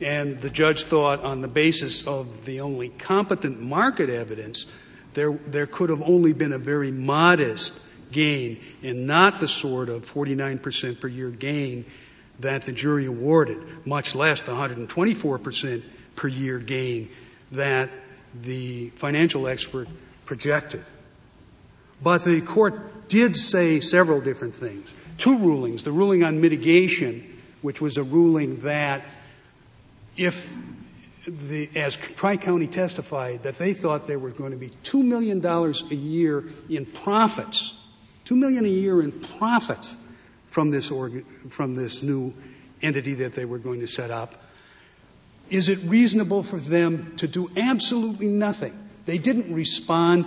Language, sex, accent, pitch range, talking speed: English, male, American, 130-180 Hz, 140 wpm